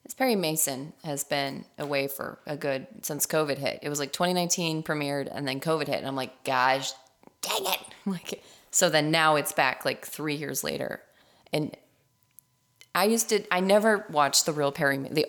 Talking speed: 185 wpm